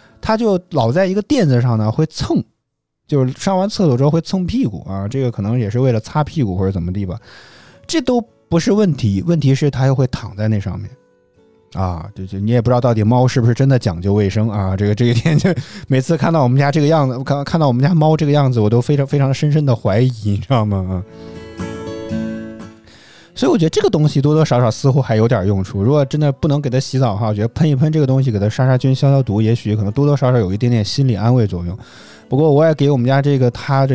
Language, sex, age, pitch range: Chinese, male, 20-39, 105-145 Hz